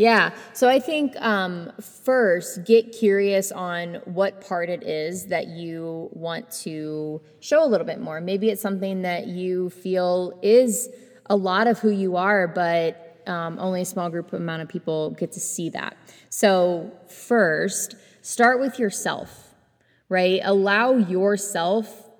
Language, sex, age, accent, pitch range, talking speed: English, female, 20-39, American, 170-210 Hz, 150 wpm